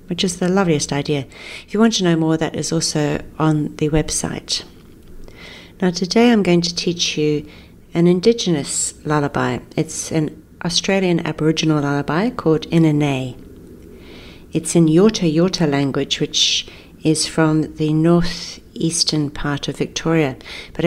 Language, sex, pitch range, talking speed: English, female, 150-175 Hz, 140 wpm